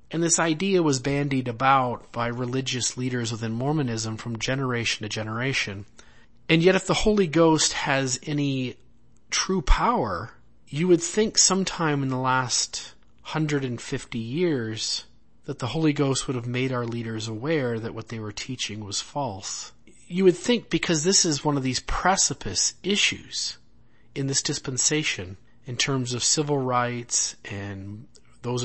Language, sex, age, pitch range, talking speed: English, male, 40-59, 115-145 Hz, 150 wpm